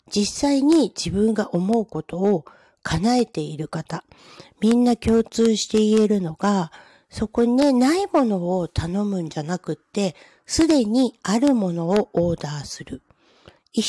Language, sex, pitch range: Japanese, female, 185-260 Hz